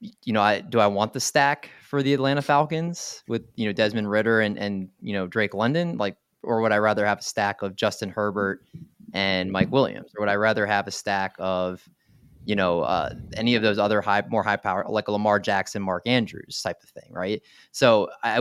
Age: 20-39